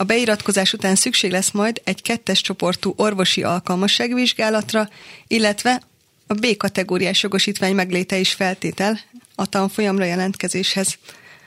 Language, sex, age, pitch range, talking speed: Hungarian, female, 30-49, 190-215 Hz, 115 wpm